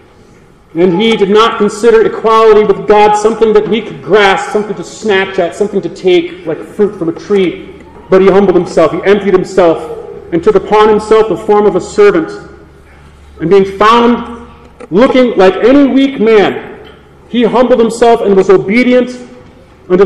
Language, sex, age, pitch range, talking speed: English, male, 40-59, 210-275 Hz, 170 wpm